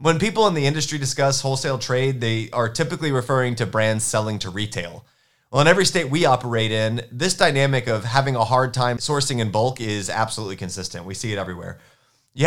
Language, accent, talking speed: English, American, 200 wpm